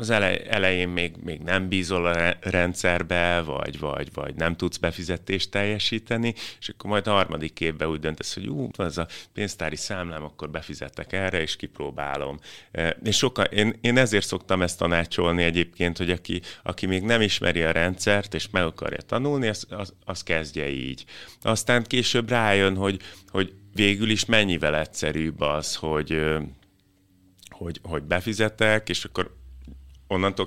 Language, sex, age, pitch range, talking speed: Hungarian, male, 30-49, 80-100 Hz, 150 wpm